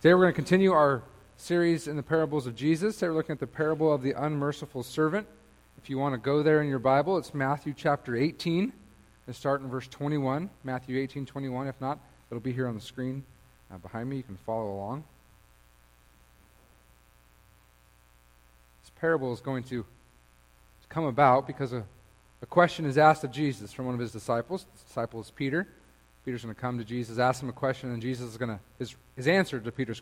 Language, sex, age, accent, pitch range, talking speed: English, male, 40-59, American, 110-150 Hz, 200 wpm